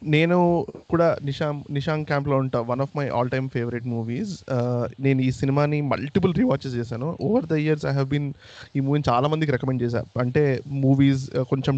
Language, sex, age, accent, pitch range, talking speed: Telugu, male, 20-39, native, 130-160 Hz, 170 wpm